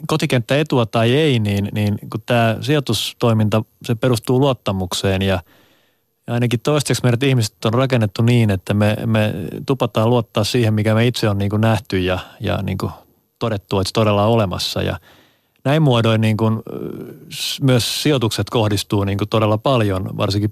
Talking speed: 165 wpm